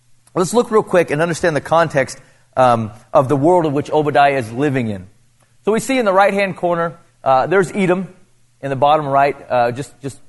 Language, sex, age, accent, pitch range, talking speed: English, male, 30-49, American, 130-170 Hz, 210 wpm